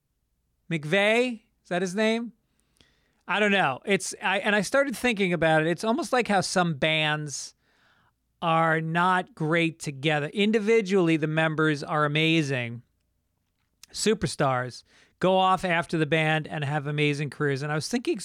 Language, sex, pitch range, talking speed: English, male, 145-225 Hz, 150 wpm